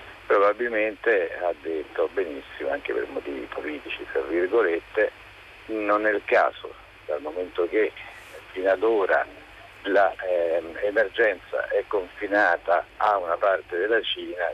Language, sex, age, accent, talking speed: Italian, male, 50-69, native, 115 wpm